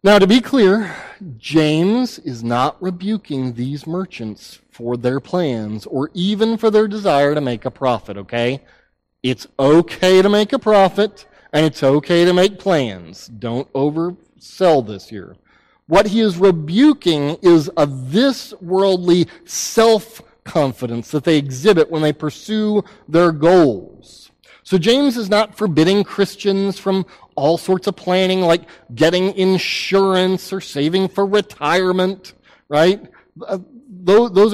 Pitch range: 145-205 Hz